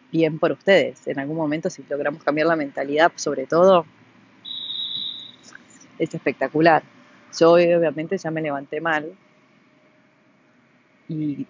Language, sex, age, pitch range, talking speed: Spanish, female, 20-39, 155-185 Hz, 115 wpm